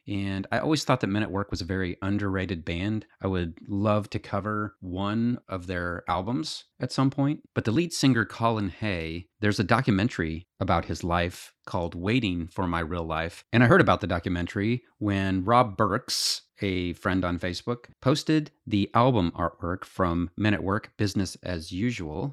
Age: 30-49